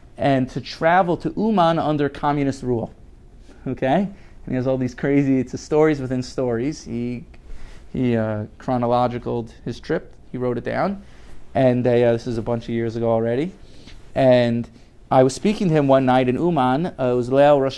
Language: English